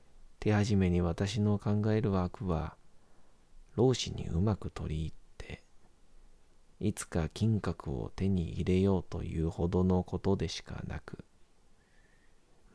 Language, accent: Japanese, native